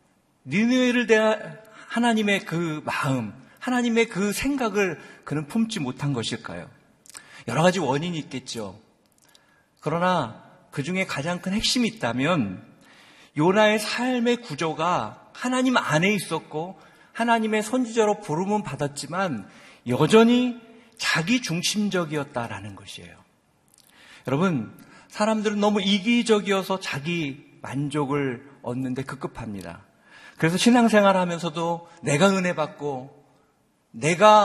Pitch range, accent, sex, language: 145-225 Hz, native, male, Korean